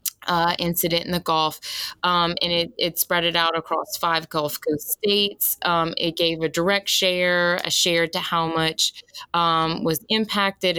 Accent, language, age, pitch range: American, English, 20-39, 160-180 Hz